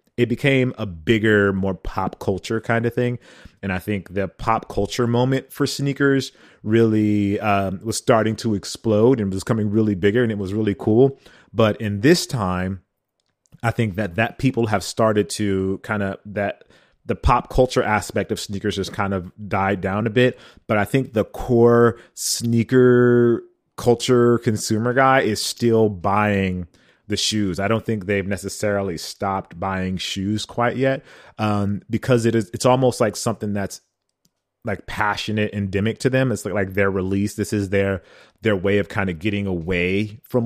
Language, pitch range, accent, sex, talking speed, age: English, 100-120 Hz, American, male, 175 wpm, 30-49